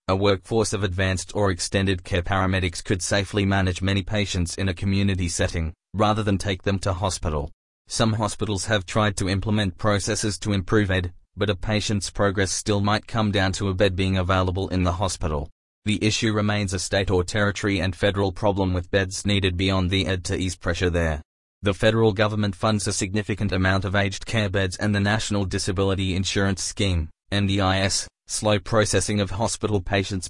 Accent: Australian